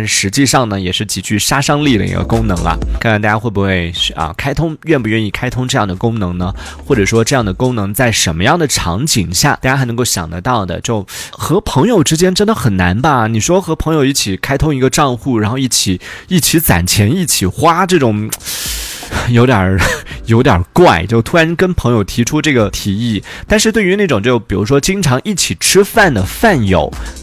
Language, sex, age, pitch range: Chinese, male, 20-39, 100-150 Hz